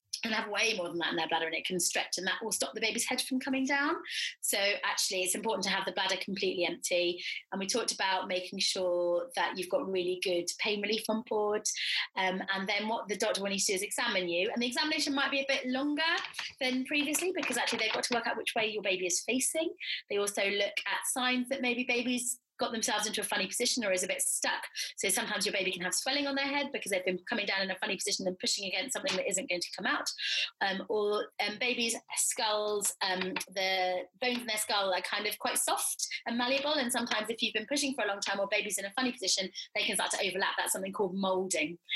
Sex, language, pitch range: female, English, 190-245 Hz